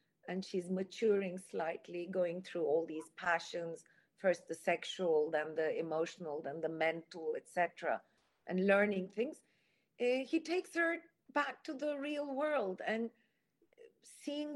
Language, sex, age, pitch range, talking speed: Turkish, female, 50-69, 185-255 Hz, 130 wpm